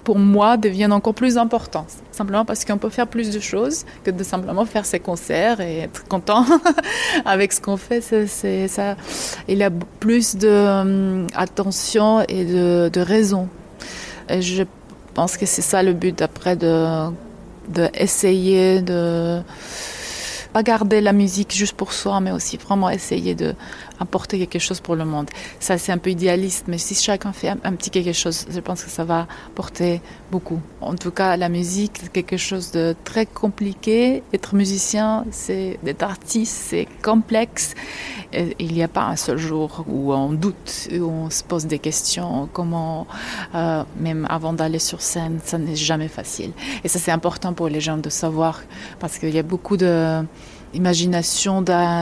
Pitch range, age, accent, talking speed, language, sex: 165-200 Hz, 30-49, French, 180 wpm, French, female